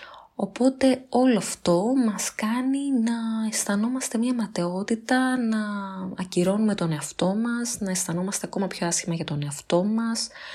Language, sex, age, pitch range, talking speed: Greek, female, 20-39, 160-195 Hz, 130 wpm